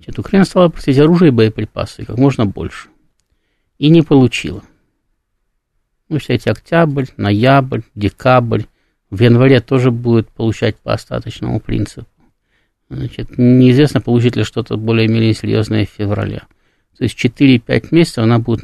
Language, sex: Russian, male